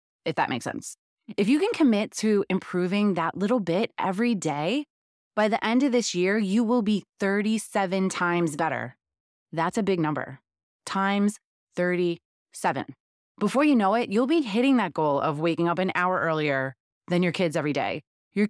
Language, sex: English, female